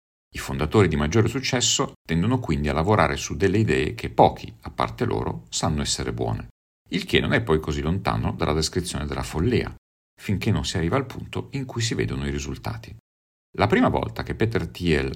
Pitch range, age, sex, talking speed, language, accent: 75-110 Hz, 50-69, male, 195 wpm, Italian, native